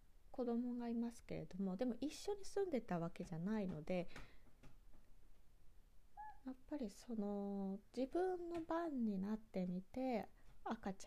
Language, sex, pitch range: Japanese, female, 165-245 Hz